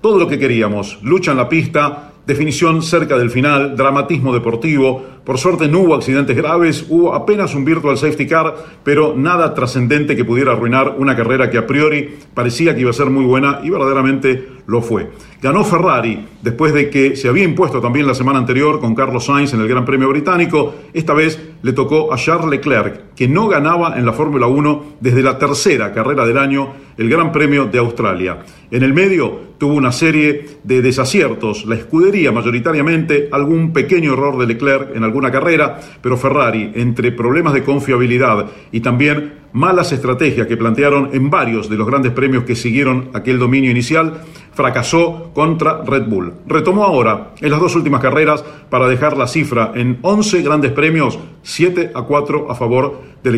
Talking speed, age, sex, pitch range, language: 180 wpm, 40-59, male, 125-155 Hz, Spanish